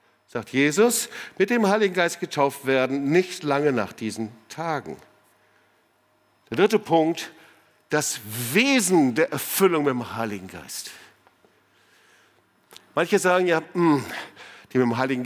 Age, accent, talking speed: 50-69, German, 120 wpm